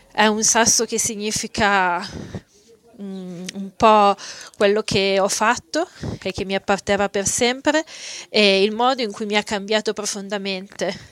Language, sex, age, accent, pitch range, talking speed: Italian, female, 20-39, native, 195-225 Hz, 140 wpm